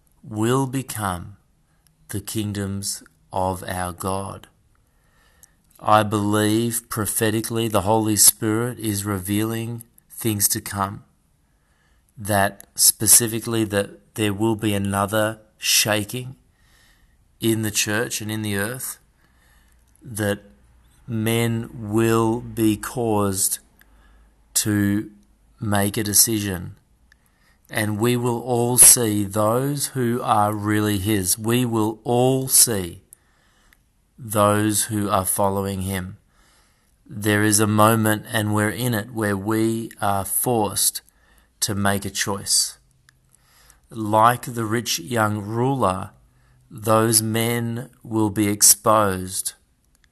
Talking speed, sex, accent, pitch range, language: 105 wpm, male, Australian, 100-115 Hz, English